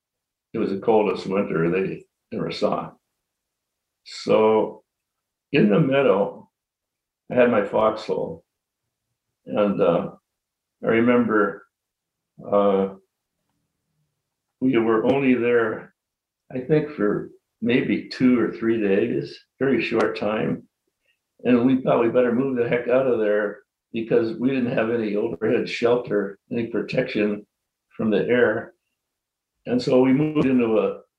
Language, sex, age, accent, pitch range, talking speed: English, male, 60-79, American, 105-130 Hz, 125 wpm